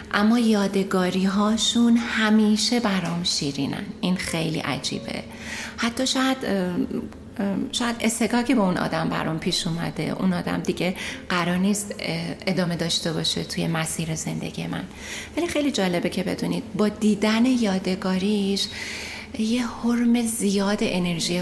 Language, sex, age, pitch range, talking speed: Persian, female, 30-49, 190-230 Hz, 120 wpm